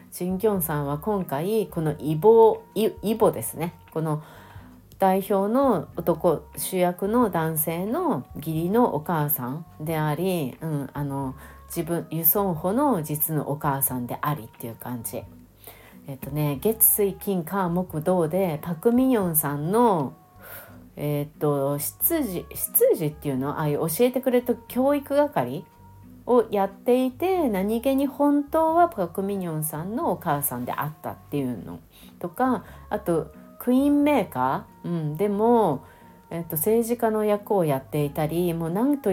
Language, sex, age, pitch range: Japanese, female, 40-59, 145-210 Hz